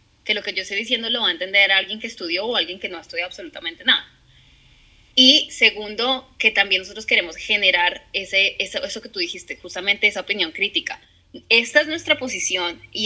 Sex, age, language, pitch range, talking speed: female, 10-29, Spanish, 195-245 Hz, 200 wpm